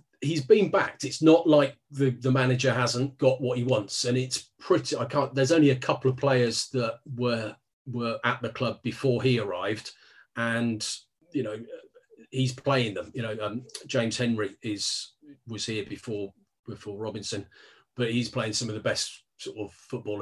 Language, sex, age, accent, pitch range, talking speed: English, male, 40-59, British, 110-135 Hz, 180 wpm